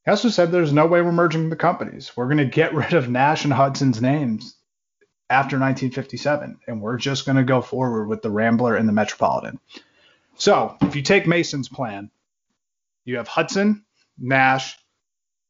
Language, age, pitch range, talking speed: English, 30-49, 110-145 Hz, 175 wpm